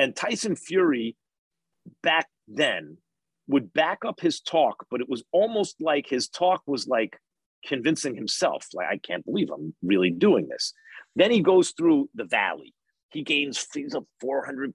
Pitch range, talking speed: 130-220 Hz, 165 wpm